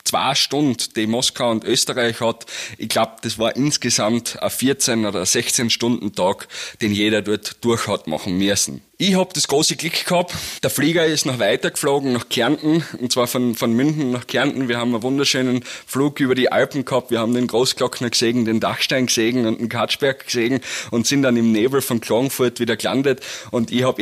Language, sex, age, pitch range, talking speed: German, male, 30-49, 110-130 Hz, 190 wpm